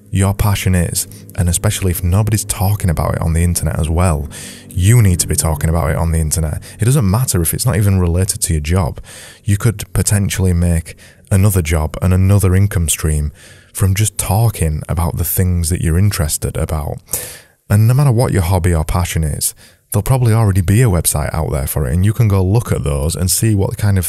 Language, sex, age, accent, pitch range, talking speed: English, male, 20-39, British, 85-105 Hz, 215 wpm